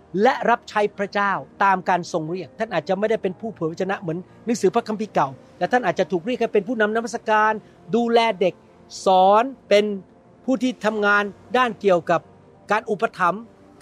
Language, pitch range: Thai, 185-235 Hz